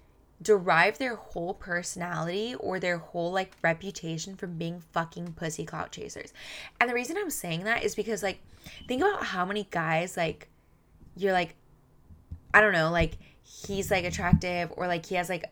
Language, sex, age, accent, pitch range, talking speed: English, female, 10-29, American, 165-210 Hz, 170 wpm